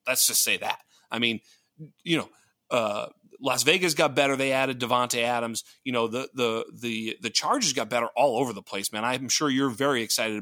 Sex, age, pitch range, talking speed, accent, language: male, 30-49, 120-145 Hz, 205 wpm, American, English